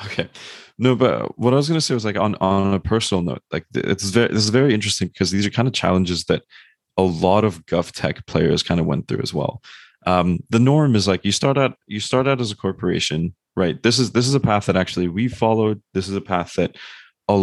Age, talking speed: 20-39, 250 wpm